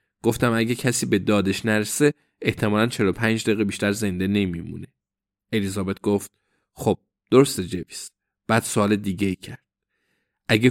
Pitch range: 100-130 Hz